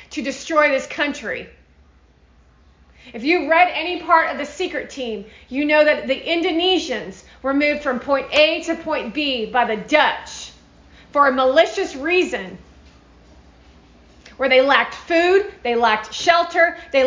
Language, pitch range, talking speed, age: English, 215-315 Hz, 145 wpm, 30-49